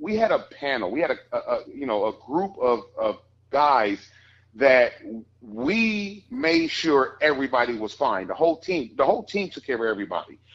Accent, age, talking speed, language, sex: American, 40-59, 190 wpm, English, male